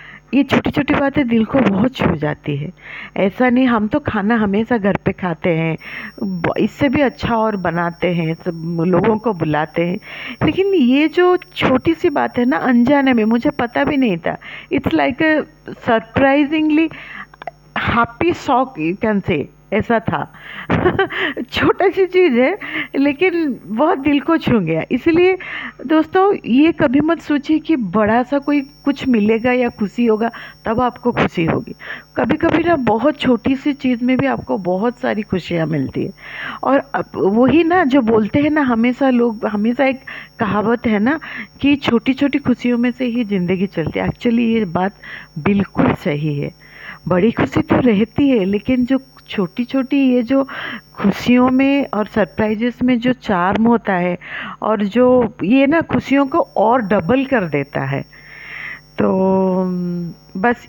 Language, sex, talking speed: Hindi, female, 160 wpm